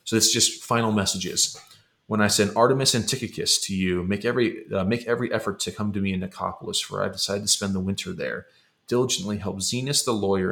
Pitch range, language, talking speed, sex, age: 95-115 Hz, English, 215 wpm, male, 30-49